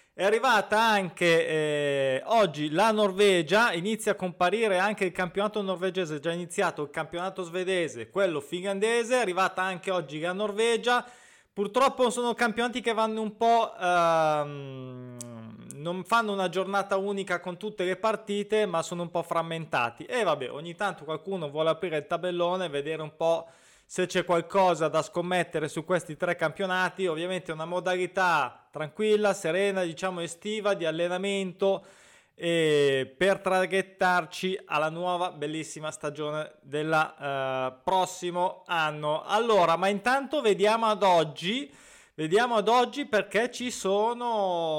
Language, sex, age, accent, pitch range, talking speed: Italian, male, 20-39, native, 160-205 Hz, 140 wpm